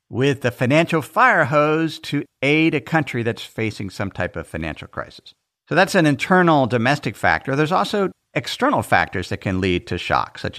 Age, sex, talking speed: 50-69, male, 180 wpm